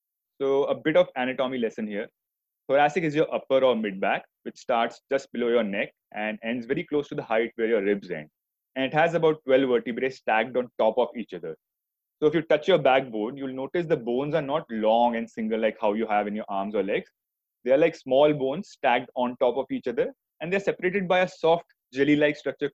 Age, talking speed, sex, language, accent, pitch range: 20-39, 225 wpm, male, English, Indian, 125-155 Hz